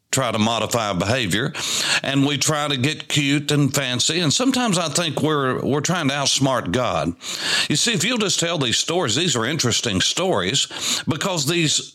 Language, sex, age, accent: English, male, 60-79, American